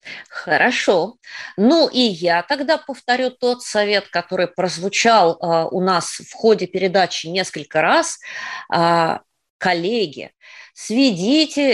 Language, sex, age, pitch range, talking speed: Russian, female, 20-39, 175-240 Hz, 95 wpm